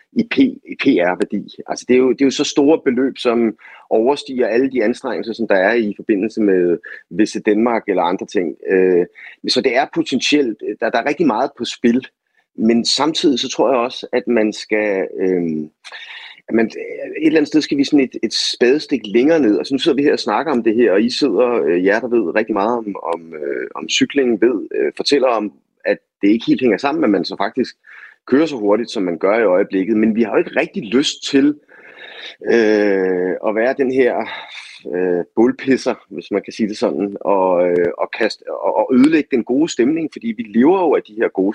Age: 30-49